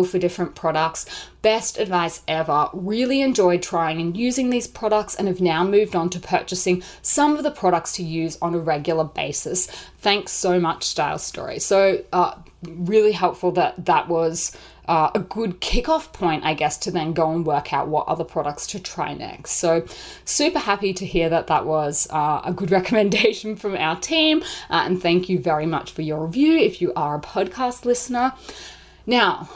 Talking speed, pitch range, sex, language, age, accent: 185 wpm, 175-230 Hz, female, English, 30-49, Australian